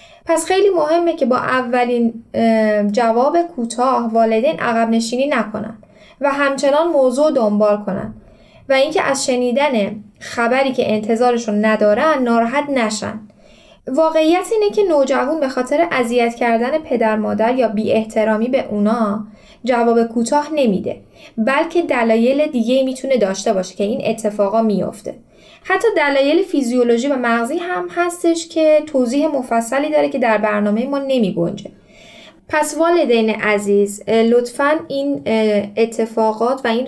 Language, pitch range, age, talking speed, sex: Persian, 215-275 Hz, 10-29, 130 wpm, female